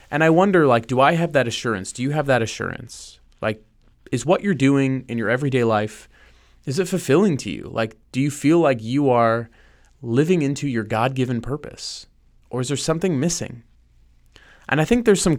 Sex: male